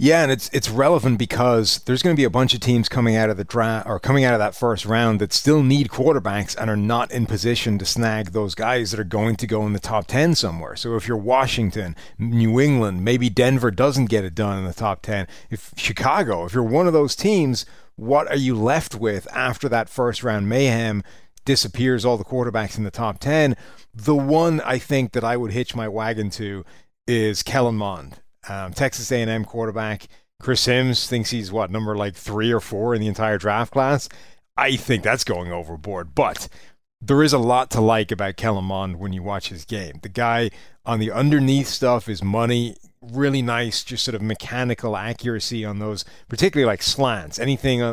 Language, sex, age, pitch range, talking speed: English, male, 30-49, 105-125 Hz, 205 wpm